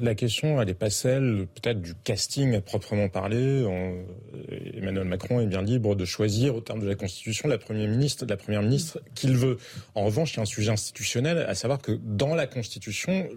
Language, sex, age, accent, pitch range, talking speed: French, male, 30-49, French, 110-150 Hz, 210 wpm